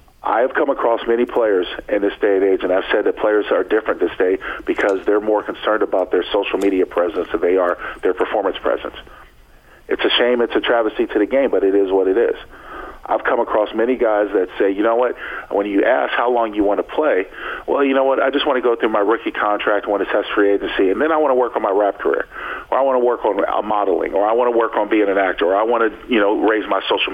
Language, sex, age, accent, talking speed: English, male, 40-59, American, 270 wpm